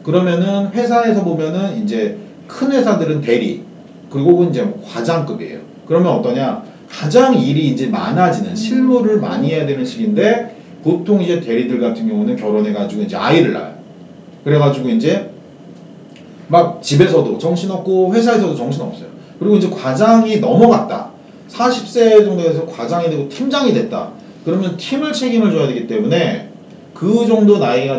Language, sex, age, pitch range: Korean, male, 40-59, 165-225 Hz